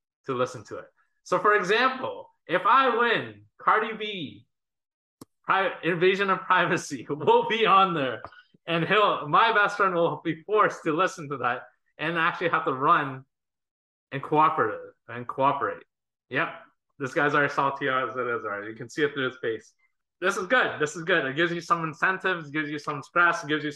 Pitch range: 125-160 Hz